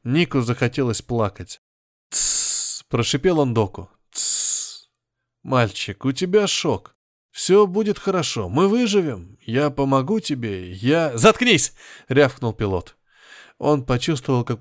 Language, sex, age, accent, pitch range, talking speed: Russian, male, 20-39, native, 115-165 Hz, 105 wpm